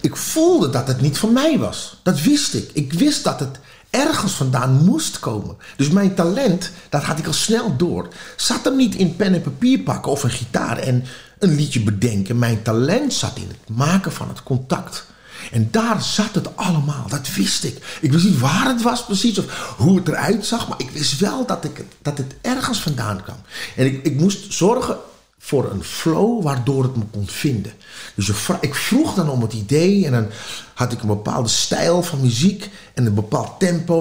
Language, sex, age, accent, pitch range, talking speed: Dutch, male, 50-69, Dutch, 115-175 Hz, 205 wpm